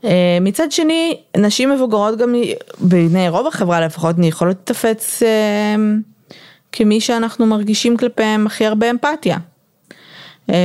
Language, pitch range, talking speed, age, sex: Hebrew, 160-205 Hz, 125 wpm, 20-39, female